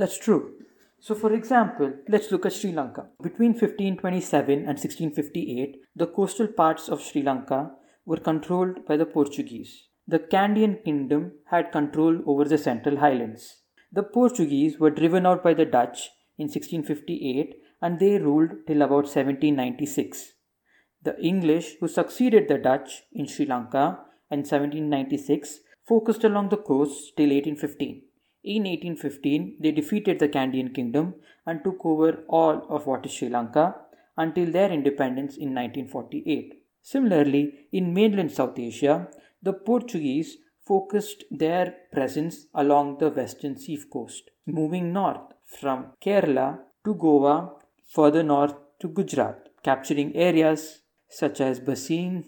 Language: English